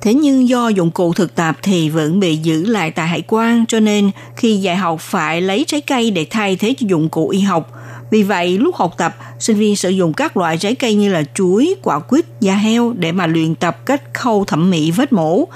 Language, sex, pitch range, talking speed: Vietnamese, female, 170-225 Hz, 240 wpm